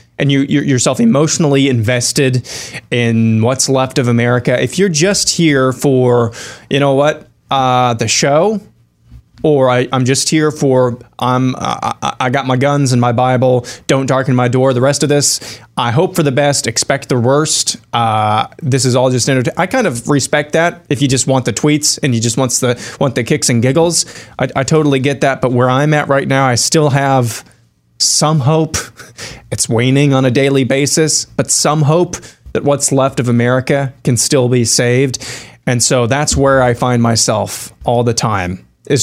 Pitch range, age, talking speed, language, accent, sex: 120-145 Hz, 20-39, 190 wpm, English, American, male